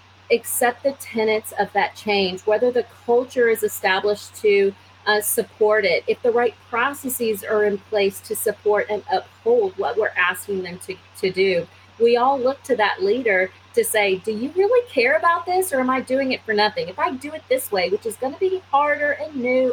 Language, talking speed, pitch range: English, 205 wpm, 210-290 Hz